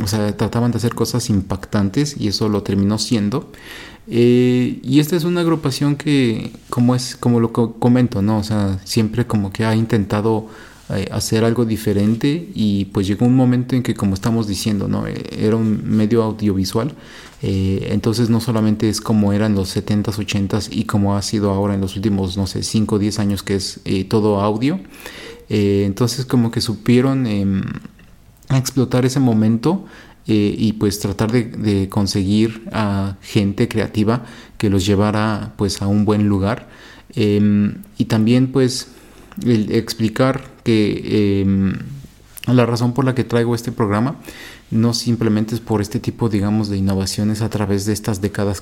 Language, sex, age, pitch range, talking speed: Spanish, male, 30-49, 105-120 Hz, 175 wpm